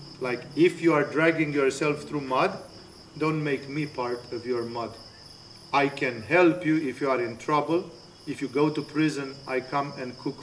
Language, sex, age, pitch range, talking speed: English, male, 40-59, 130-165 Hz, 190 wpm